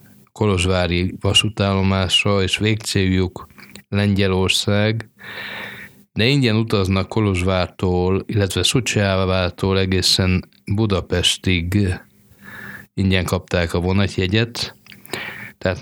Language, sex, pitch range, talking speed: Hungarian, male, 95-105 Hz, 70 wpm